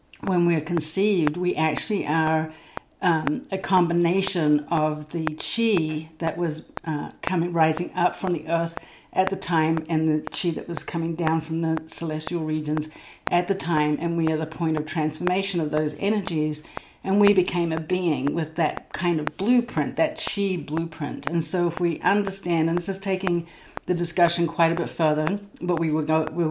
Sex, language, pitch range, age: female, English, 155-175 Hz, 50-69